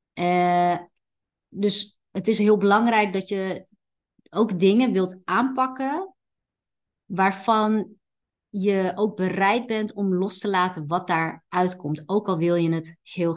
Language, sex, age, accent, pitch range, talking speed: Dutch, female, 30-49, Dutch, 180-230 Hz, 135 wpm